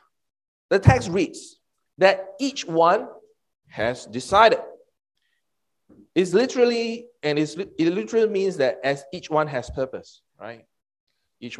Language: English